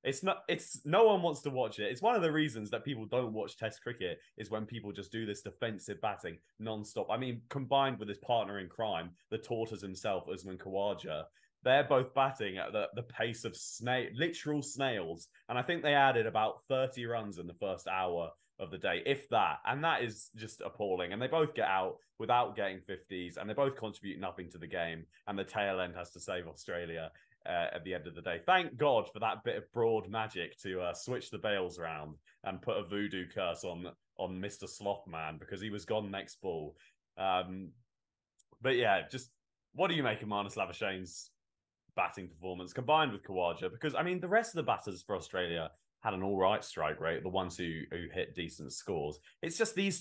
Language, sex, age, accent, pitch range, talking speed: English, male, 20-39, British, 95-135 Hz, 215 wpm